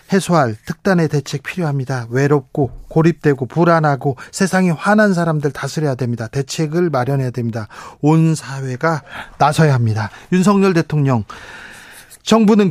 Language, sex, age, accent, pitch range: Korean, male, 40-59, native, 140-185 Hz